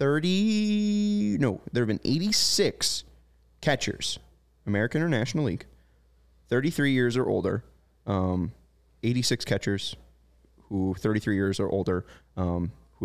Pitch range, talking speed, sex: 95-125 Hz, 115 wpm, male